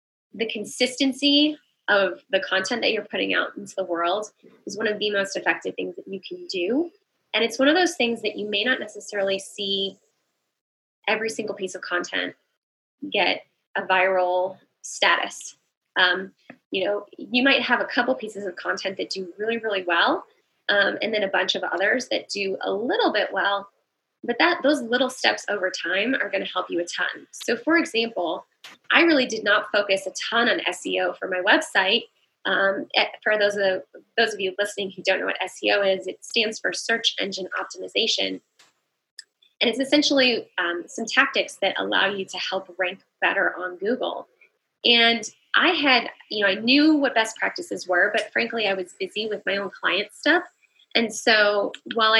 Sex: female